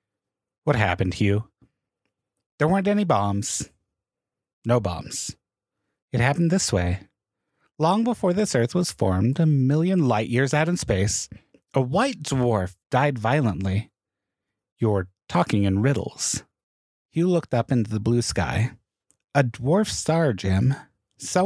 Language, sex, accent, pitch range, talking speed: English, male, American, 115-180 Hz, 130 wpm